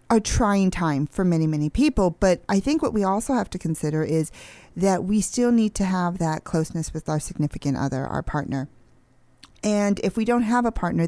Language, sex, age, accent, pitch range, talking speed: English, female, 40-59, American, 160-215 Hz, 205 wpm